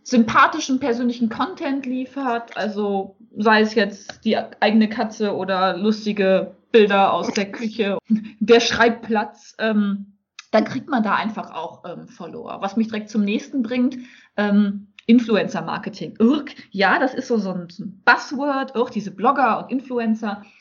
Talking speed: 145 wpm